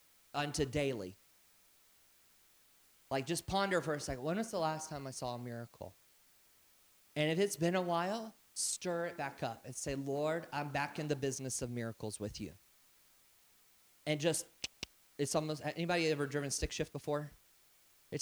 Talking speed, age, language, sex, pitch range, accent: 165 wpm, 30-49, English, male, 125-160 Hz, American